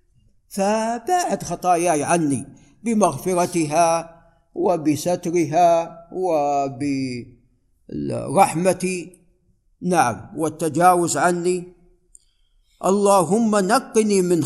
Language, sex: Arabic, male